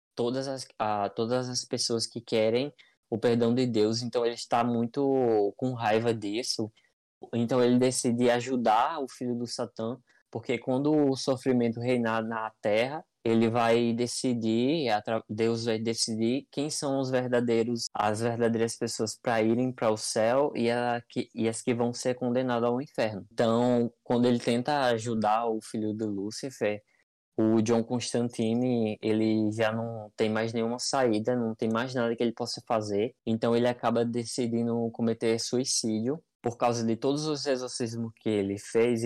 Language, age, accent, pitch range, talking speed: Portuguese, 20-39, Brazilian, 110-125 Hz, 160 wpm